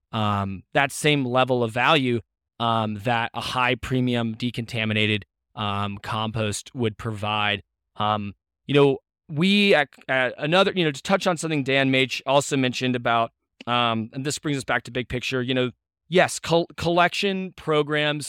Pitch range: 115-145 Hz